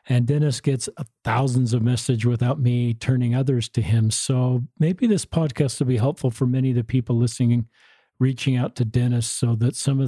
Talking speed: 195 wpm